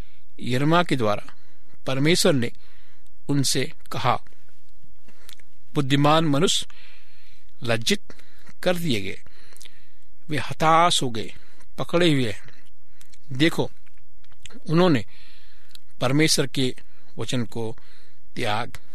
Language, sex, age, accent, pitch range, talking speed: Hindi, male, 60-79, native, 115-155 Hz, 65 wpm